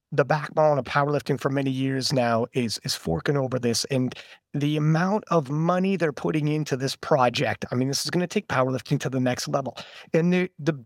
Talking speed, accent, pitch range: 210 wpm, American, 145-200 Hz